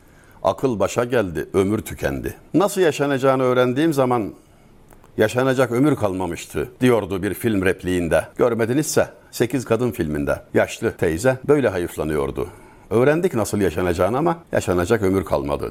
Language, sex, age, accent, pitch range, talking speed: Turkish, male, 60-79, native, 95-135 Hz, 120 wpm